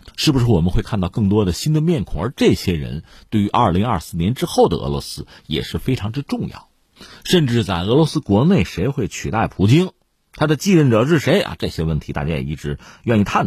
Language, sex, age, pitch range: Chinese, male, 50-69, 95-155 Hz